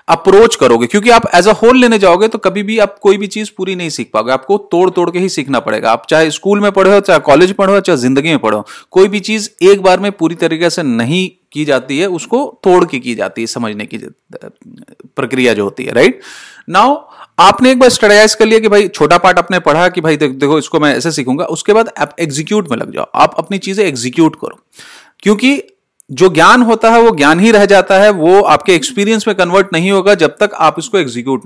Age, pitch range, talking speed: 30-49, 155-215 Hz, 230 wpm